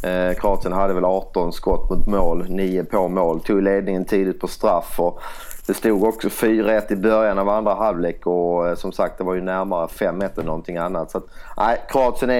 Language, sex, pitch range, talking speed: English, male, 90-110 Hz, 190 wpm